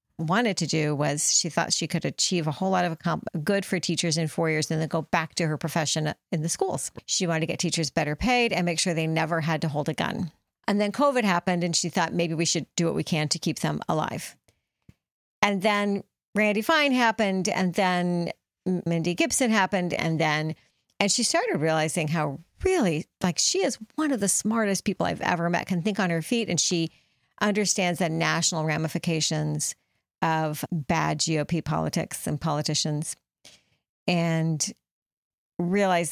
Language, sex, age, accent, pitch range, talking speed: English, female, 50-69, American, 160-200 Hz, 185 wpm